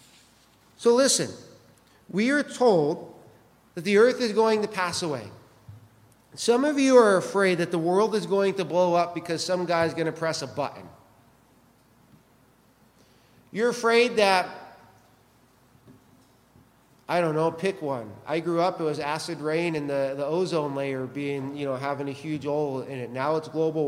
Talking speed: 165 wpm